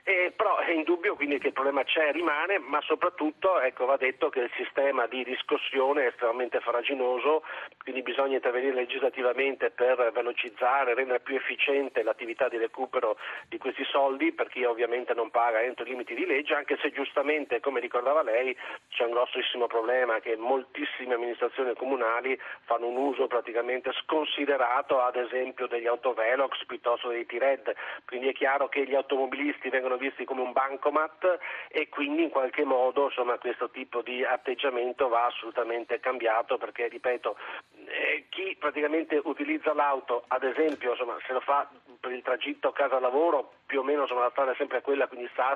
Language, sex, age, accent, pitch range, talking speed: Italian, male, 40-59, native, 125-150 Hz, 165 wpm